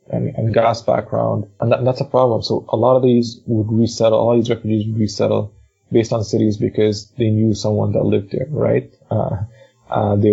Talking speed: 210 wpm